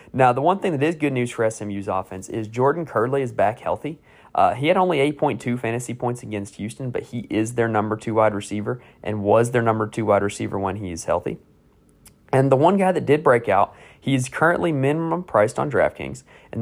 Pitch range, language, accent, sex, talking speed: 105-140 Hz, English, American, male, 220 wpm